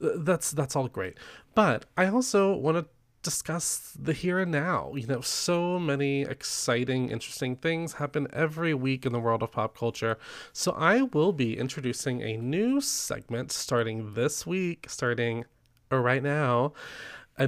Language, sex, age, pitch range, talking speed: English, male, 20-39, 125-160 Hz, 155 wpm